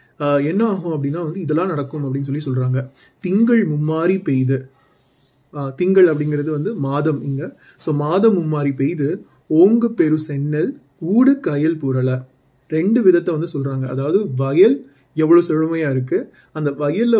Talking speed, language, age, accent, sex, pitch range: 140 wpm, Tamil, 30-49, native, male, 135-175 Hz